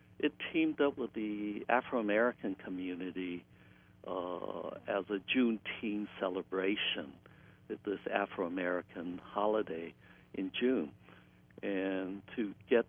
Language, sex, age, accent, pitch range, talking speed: English, male, 60-79, American, 95-105 Hz, 100 wpm